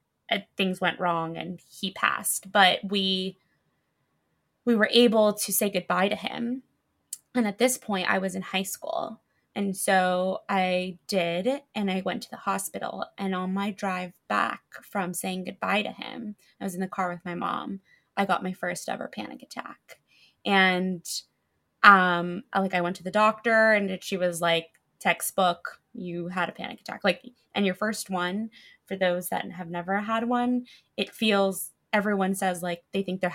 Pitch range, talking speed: 180-210 Hz, 175 wpm